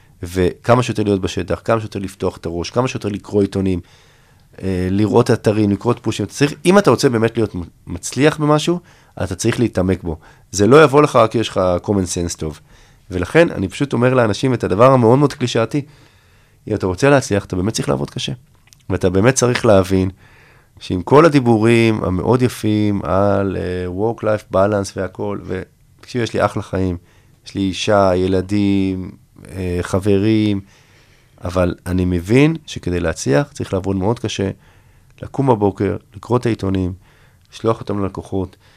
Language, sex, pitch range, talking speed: Hebrew, male, 95-125 Hz, 160 wpm